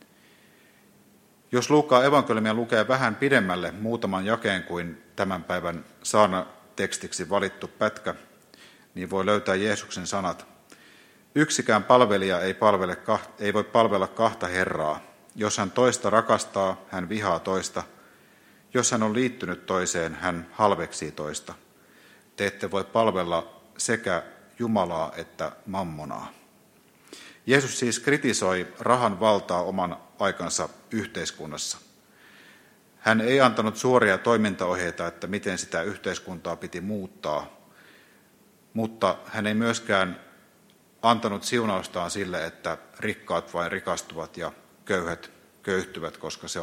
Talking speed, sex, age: 110 wpm, male, 50-69